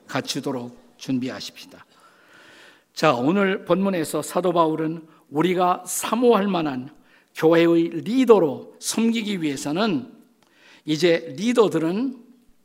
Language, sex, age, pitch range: Korean, male, 50-69, 150-215 Hz